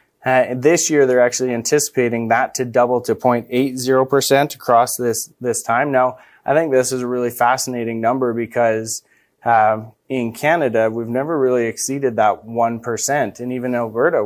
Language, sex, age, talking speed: English, male, 20-39, 165 wpm